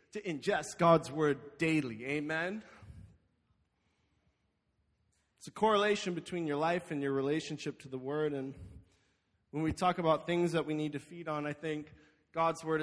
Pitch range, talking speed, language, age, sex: 155-225 Hz, 160 wpm, English, 20-39, male